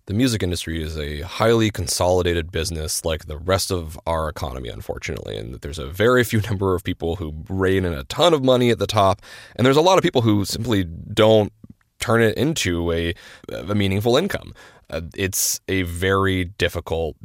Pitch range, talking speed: 85-115 Hz, 190 wpm